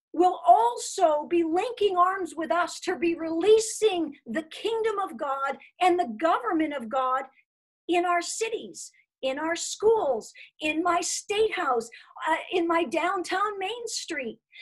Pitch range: 305-400 Hz